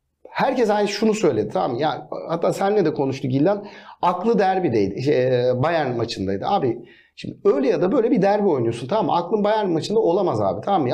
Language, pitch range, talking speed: Turkish, 160-235 Hz, 195 wpm